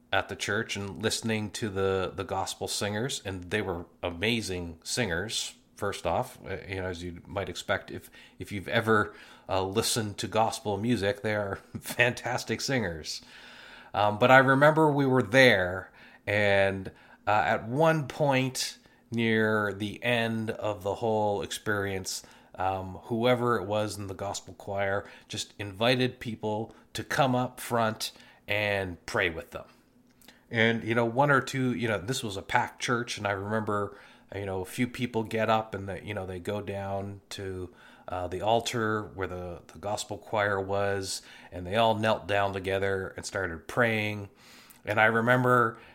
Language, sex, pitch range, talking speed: English, male, 100-120 Hz, 160 wpm